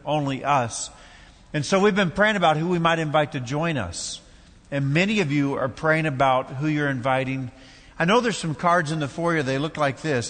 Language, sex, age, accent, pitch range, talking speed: English, male, 50-69, American, 125-160 Hz, 215 wpm